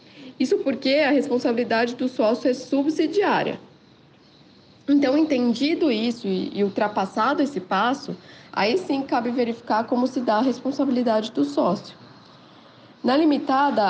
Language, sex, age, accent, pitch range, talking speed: Portuguese, female, 20-39, Brazilian, 215-270 Hz, 120 wpm